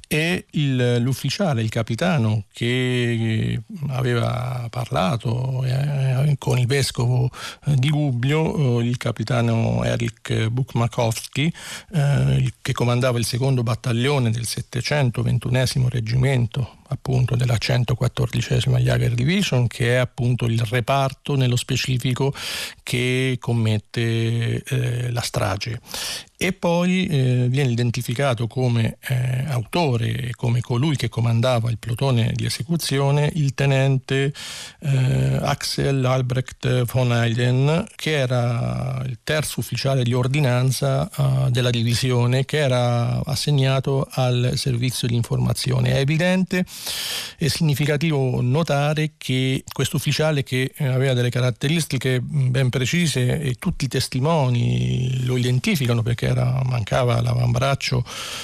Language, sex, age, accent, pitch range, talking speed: Italian, male, 50-69, native, 120-140 Hz, 115 wpm